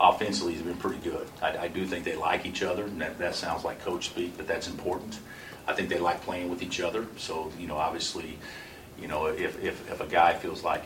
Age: 50-69